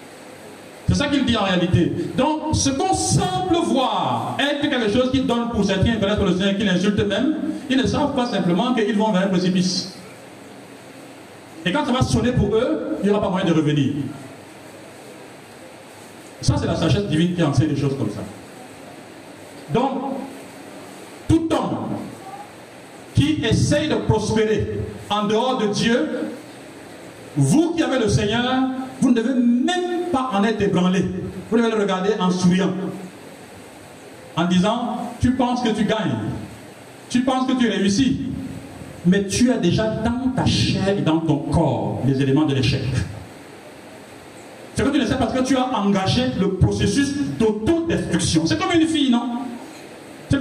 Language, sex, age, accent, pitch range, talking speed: French, male, 50-69, French, 180-270 Hz, 160 wpm